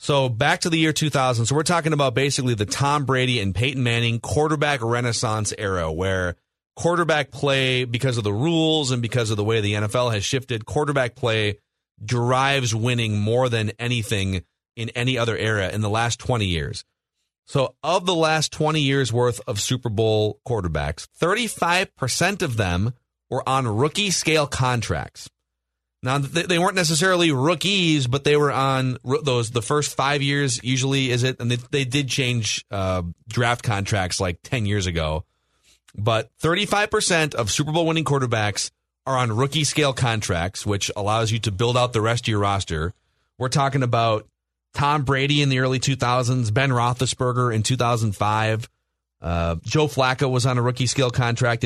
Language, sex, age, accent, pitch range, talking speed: English, male, 30-49, American, 110-140 Hz, 175 wpm